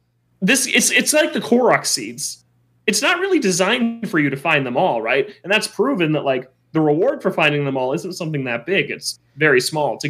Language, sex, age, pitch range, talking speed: English, male, 20-39, 125-180 Hz, 220 wpm